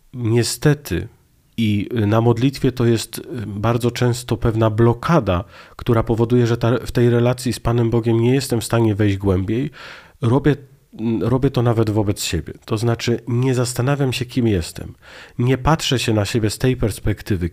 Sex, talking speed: male, 160 wpm